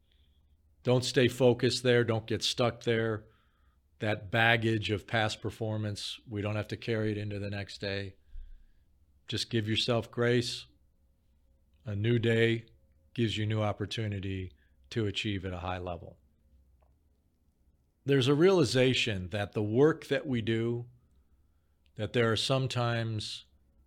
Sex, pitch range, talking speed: male, 75-115 Hz, 135 wpm